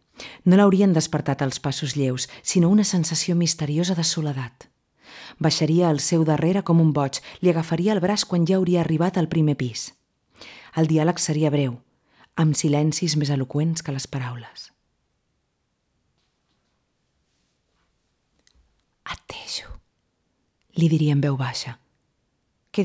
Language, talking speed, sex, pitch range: Spanish, 125 wpm, female, 140-170 Hz